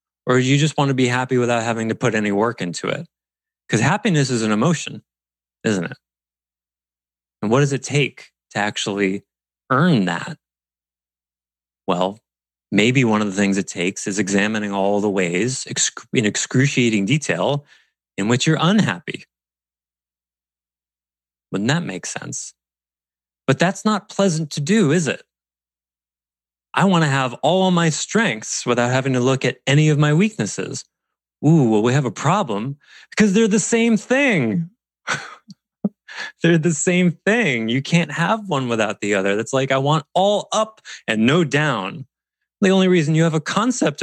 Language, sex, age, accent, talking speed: English, male, 30-49, American, 160 wpm